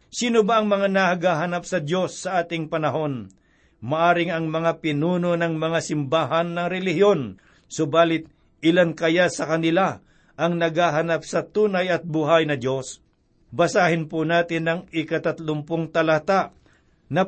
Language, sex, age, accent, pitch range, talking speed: Filipino, male, 60-79, native, 160-190 Hz, 135 wpm